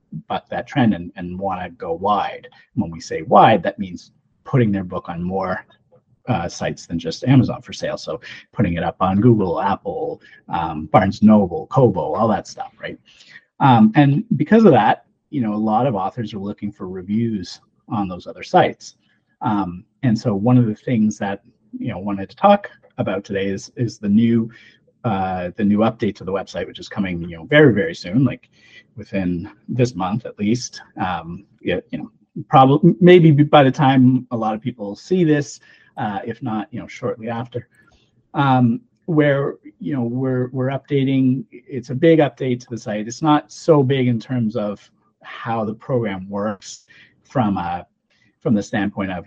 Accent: American